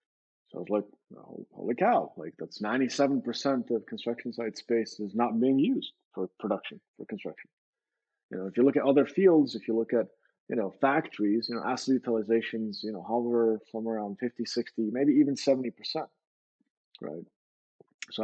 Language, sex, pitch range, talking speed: English, male, 105-130 Hz, 175 wpm